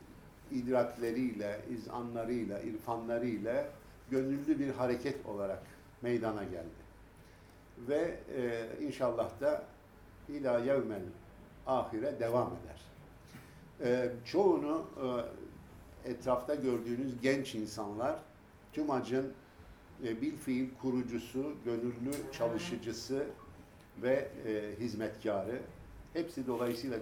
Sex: male